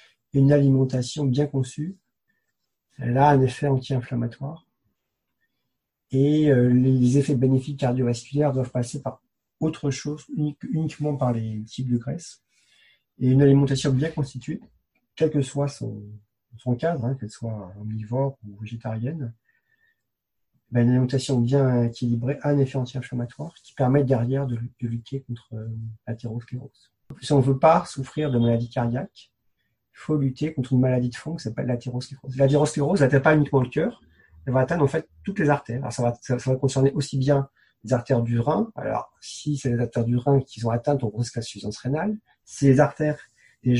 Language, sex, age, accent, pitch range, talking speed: French, male, 40-59, French, 120-140 Hz, 175 wpm